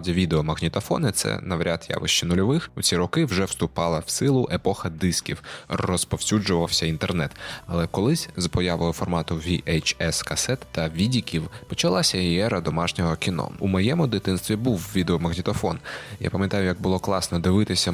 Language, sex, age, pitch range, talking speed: Ukrainian, male, 20-39, 85-105 Hz, 135 wpm